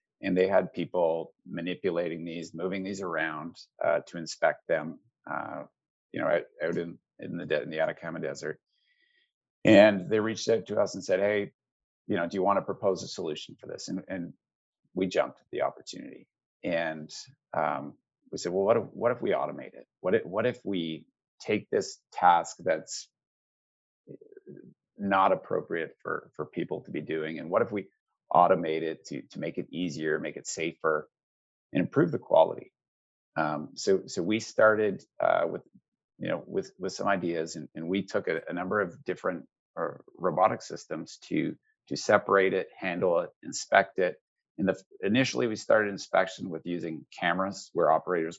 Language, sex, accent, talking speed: English, male, American, 180 wpm